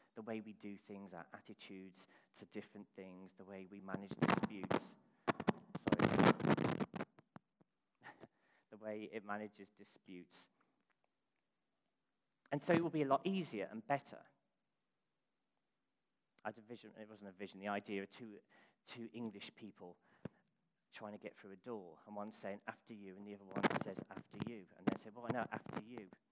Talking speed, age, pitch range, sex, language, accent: 165 wpm, 40-59, 105-150 Hz, male, English, British